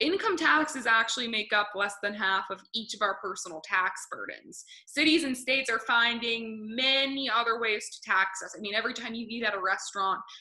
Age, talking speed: 20-39, 200 wpm